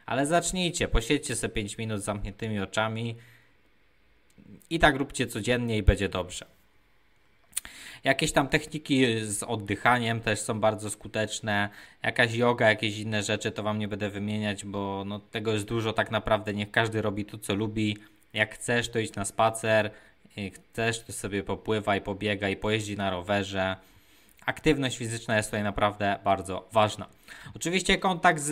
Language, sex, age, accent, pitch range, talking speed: Polish, male, 20-39, native, 105-125 Hz, 160 wpm